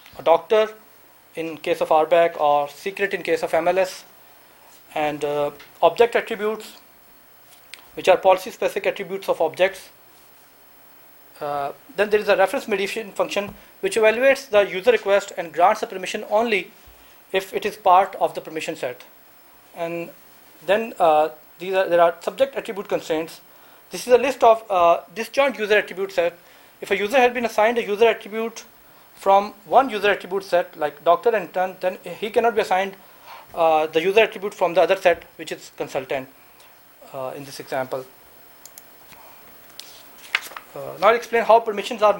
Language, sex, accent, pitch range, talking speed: English, male, Indian, 170-215 Hz, 160 wpm